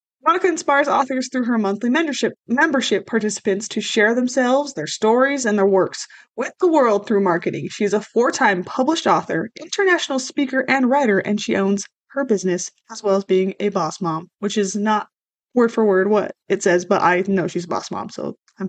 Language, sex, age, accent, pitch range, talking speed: English, female, 20-39, American, 200-270 Hz, 195 wpm